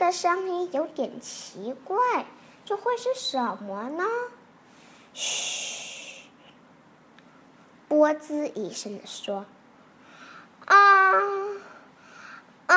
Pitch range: 250-355 Hz